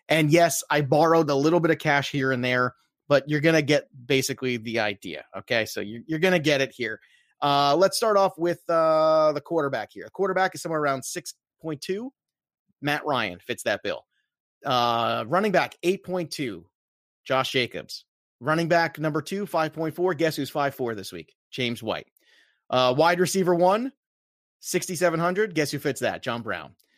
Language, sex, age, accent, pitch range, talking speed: English, male, 30-49, American, 130-175 Hz, 175 wpm